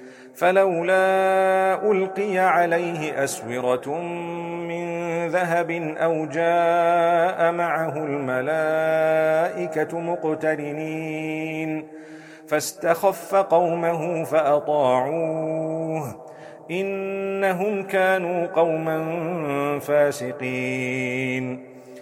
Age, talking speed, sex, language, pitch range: 40-59, 50 wpm, male, German, 145-170 Hz